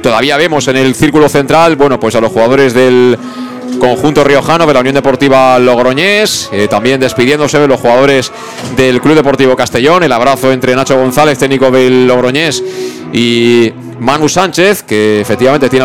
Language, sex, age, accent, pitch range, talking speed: Spanish, male, 40-59, Spanish, 115-140 Hz, 165 wpm